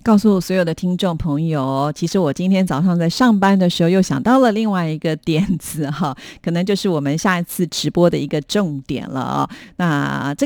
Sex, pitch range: female, 155-195 Hz